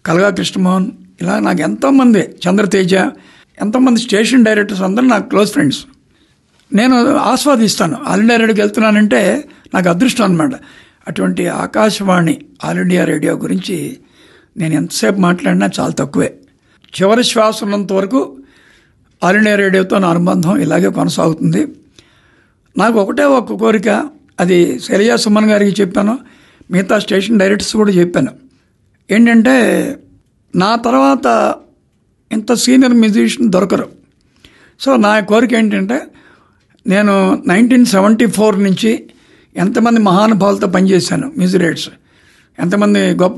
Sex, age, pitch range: male, 60-79, 190-235 Hz